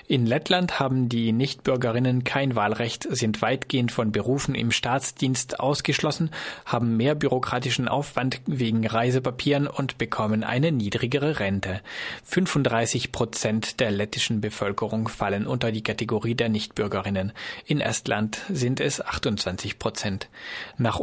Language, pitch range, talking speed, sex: German, 110-135 Hz, 125 wpm, male